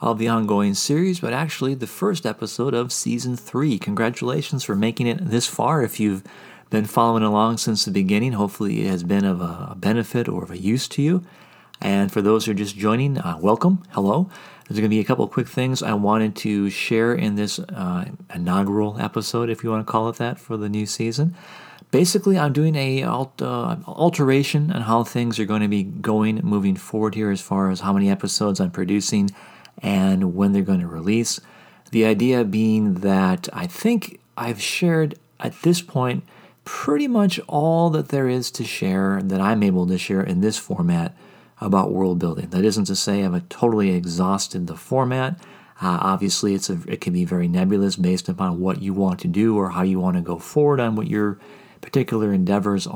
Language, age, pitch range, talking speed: English, 40-59, 100-145 Hz, 200 wpm